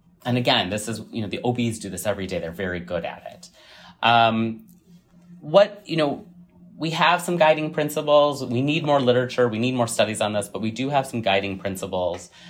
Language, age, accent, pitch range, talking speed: English, 30-49, American, 100-140 Hz, 205 wpm